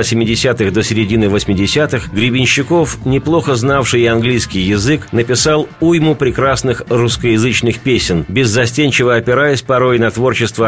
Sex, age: male, 40-59